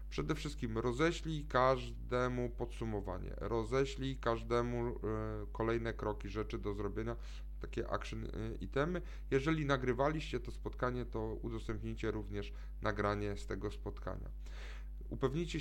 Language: Polish